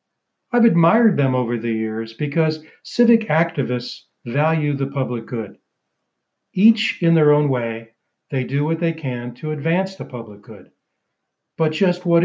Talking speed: 150 wpm